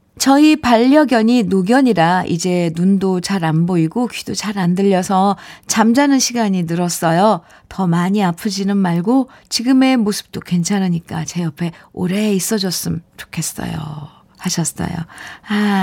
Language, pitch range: Korean, 170-235 Hz